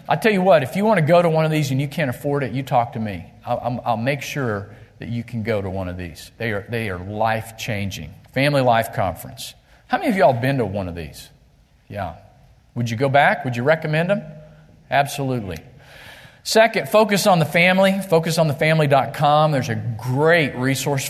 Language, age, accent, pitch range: English, 40-59, American, 115-145 Hz